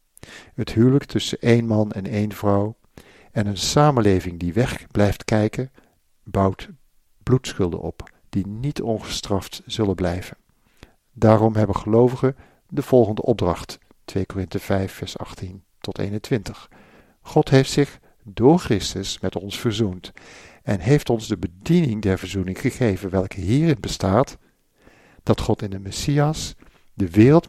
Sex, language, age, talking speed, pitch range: male, Dutch, 50-69, 135 wpm, 100-125 Hz